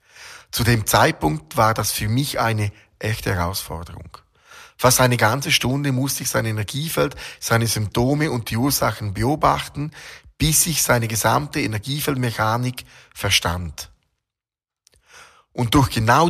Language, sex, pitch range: German, male, 105-140 Hz